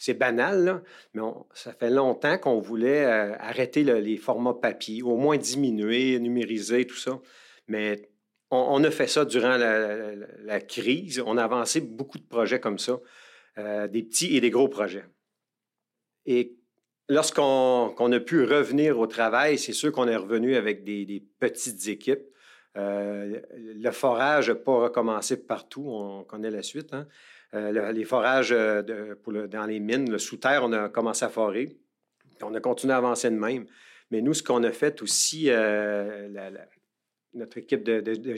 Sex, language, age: male, French, 50-69